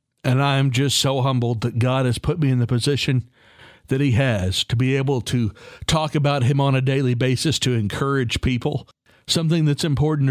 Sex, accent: male, American